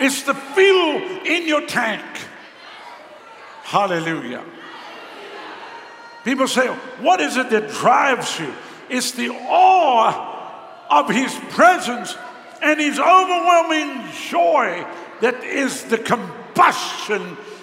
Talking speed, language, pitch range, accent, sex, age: 100 wpm, English, 205-280 Hz, American, male, 60-79